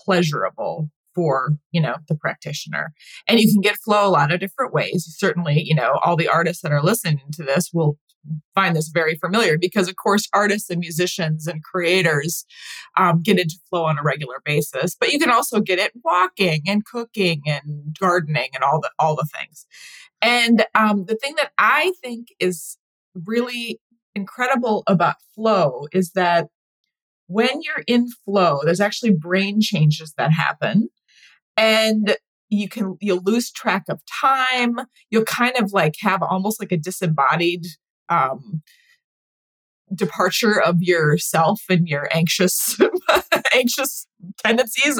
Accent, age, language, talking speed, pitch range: American, 30-49, English, 155 wpm, 170-235 Hz